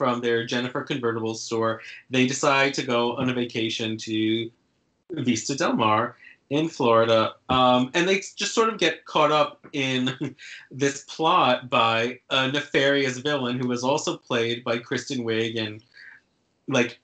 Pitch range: 115-145 Hz